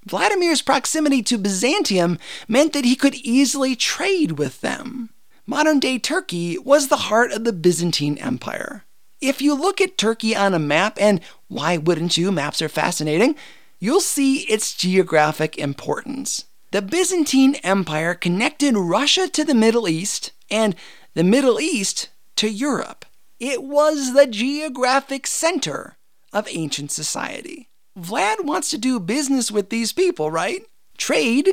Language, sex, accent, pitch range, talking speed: English, male, American, 185-280 Hz, 140 wpm